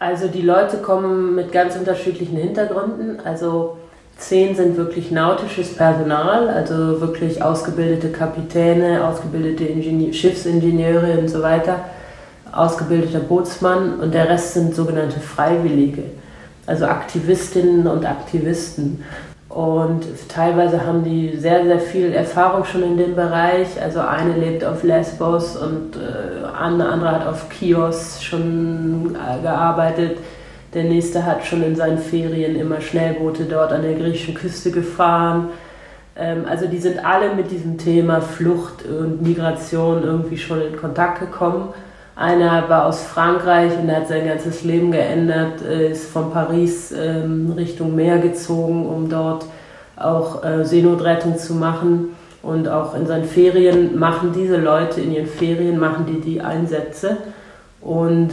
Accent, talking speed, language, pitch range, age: German, 130 wpm, German, 160-175 Hz, 30-49